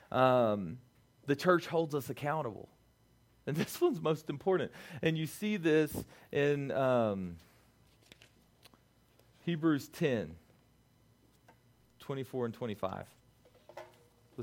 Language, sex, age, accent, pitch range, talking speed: English, male, 40-59, American, 120-185 Hz, 85 wpm